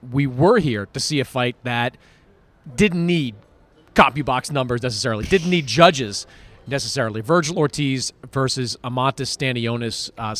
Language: English